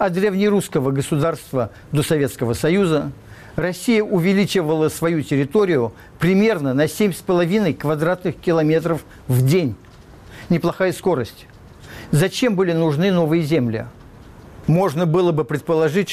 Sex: male